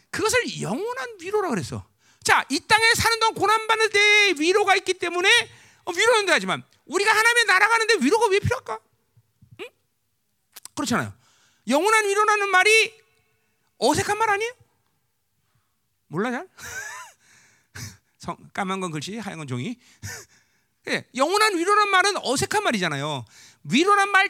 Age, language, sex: 40-59, Korean, male